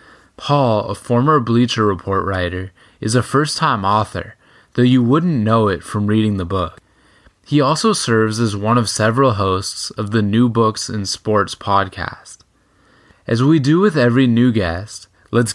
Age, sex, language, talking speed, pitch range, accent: 10-29, male, English, 160 wpm, 100-120 Hz, American